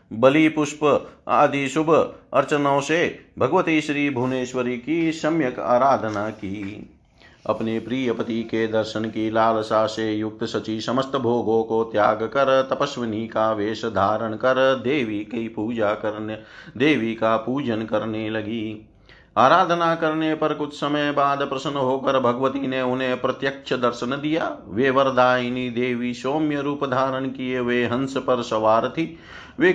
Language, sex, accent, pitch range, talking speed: Hindi, male, native, 120-150 Hz, 135 wpm